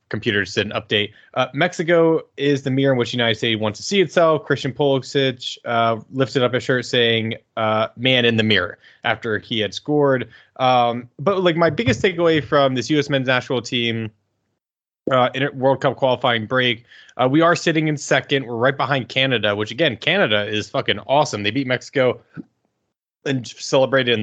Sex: male